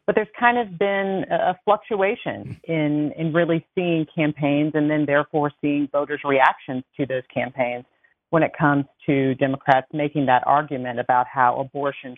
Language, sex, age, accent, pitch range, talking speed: English, female, 40-59, American, 135-155 Hz, 160 wpm